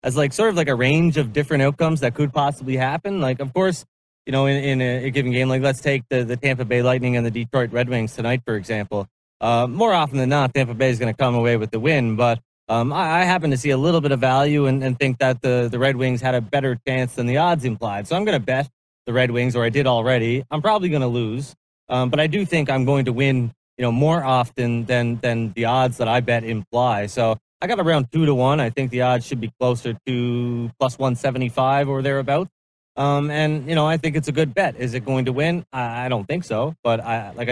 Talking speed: 260 wpm